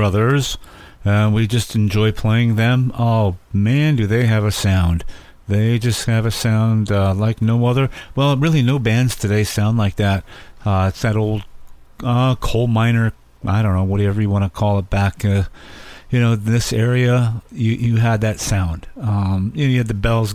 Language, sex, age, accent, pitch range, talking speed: English, male, 50-69, American, 100-120 Hz, 195 wpm